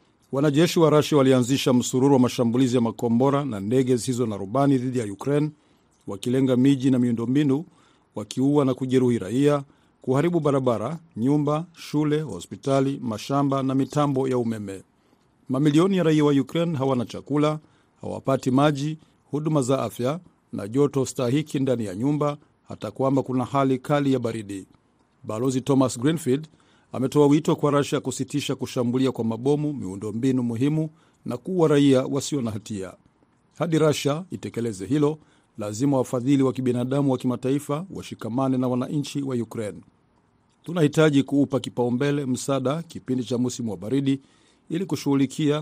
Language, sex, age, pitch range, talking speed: Swahili, male, 50-69, 125-145 Hz, 140 wpm